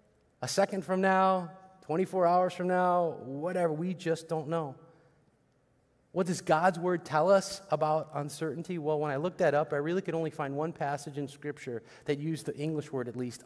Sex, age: male, 30-49